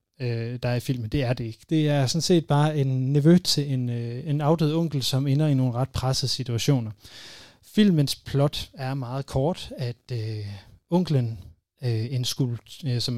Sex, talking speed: male, 155 wpm